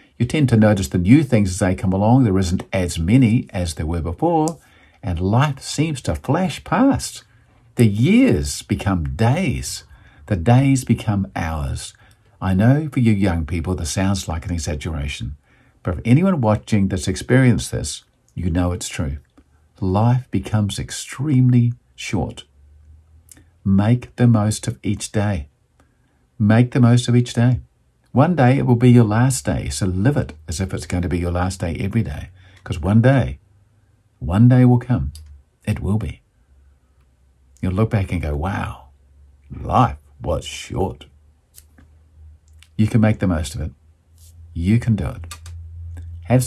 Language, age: English, 50-69